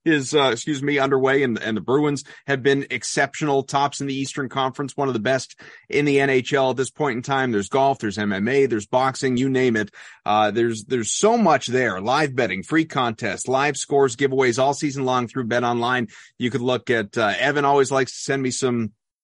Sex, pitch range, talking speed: male, 125-155 Hz, 215 wpm